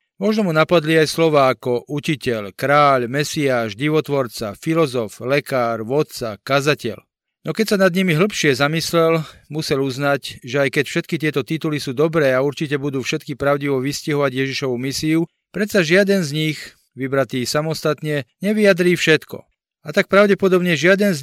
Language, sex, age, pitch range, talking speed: Slovak, male, 40-59, 130-165 Hz, 145 wpm